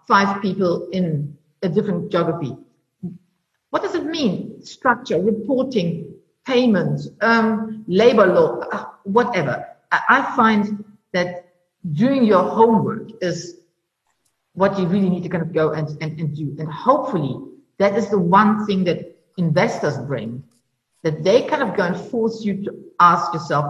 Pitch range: 170-230 Hz